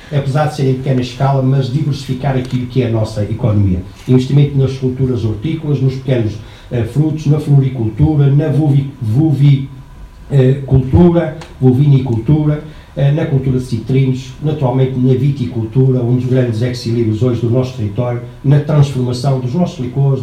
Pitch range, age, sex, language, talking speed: 120-140 Hz, 60-79, male, Portuguese, 140 wpm